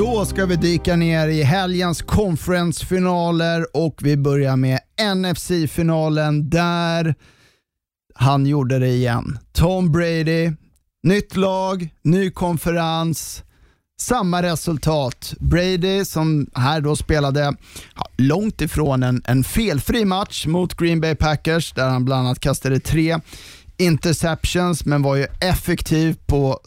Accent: native